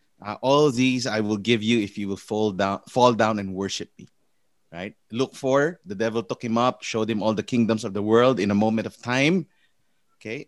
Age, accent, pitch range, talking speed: 30-49, Filipino, 115-150 Hz, 220 wpm